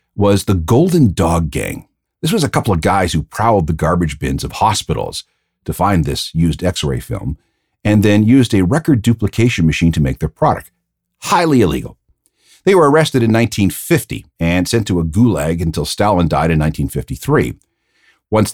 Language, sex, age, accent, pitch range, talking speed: English, male, 50-69, American, 85-115 Hz, 170 wpm